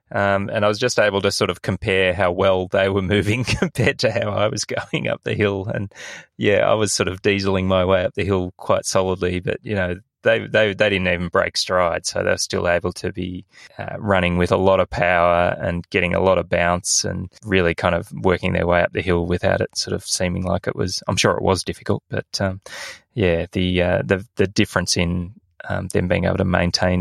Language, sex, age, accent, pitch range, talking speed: English, male, 20-39, Australian, 90-100 Hz, 235 wpm